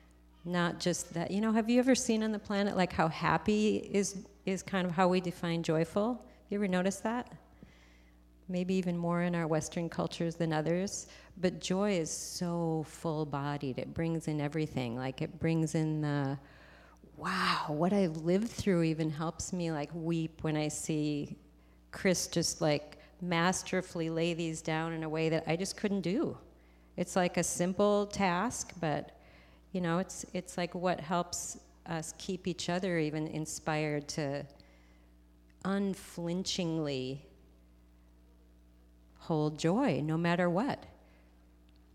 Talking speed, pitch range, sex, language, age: 150 wpm, 150-185 Hz, female, English, 40-59